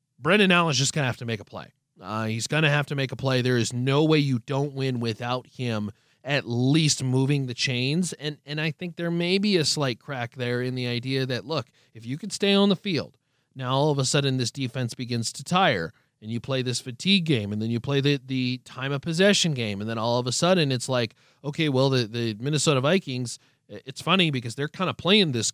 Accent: American